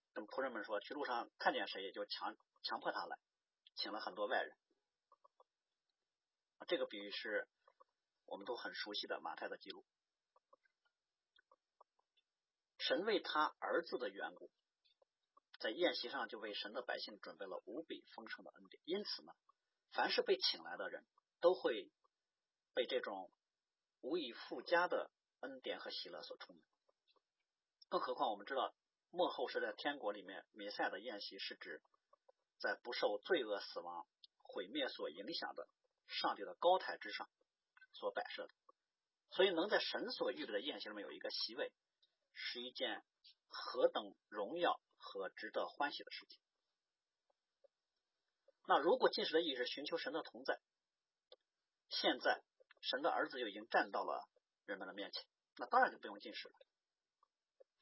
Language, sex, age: Chinese, male, 40-59